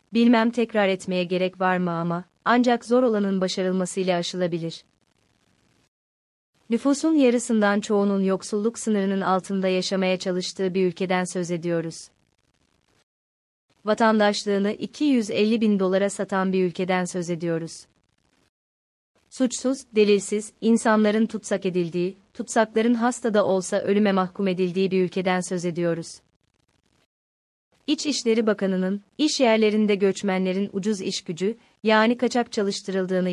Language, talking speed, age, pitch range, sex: Turkish, 110 wpm, 30-49, 180-215 Hz, female